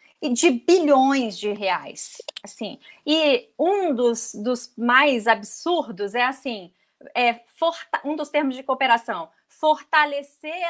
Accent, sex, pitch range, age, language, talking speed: Brazilian, female, 245-305 Hz, 30-49, Portuguese, 105 wpm